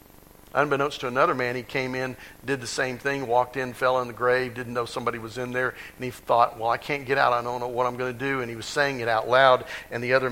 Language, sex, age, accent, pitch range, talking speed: English, male, 50-69, American, 110-135 Hz, 285 wpm